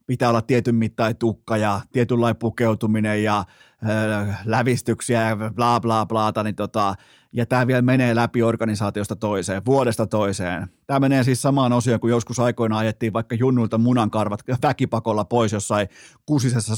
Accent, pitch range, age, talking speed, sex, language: native, 110-130 Hz, 30-49, 150 wpm, male, Finnish